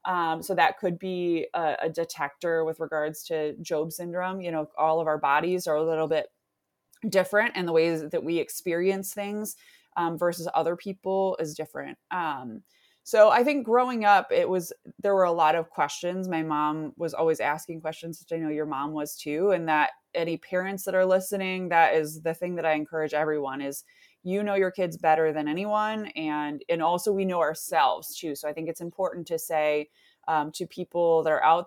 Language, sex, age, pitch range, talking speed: English, female, 20-39, 155-190 Hz, 205 wpm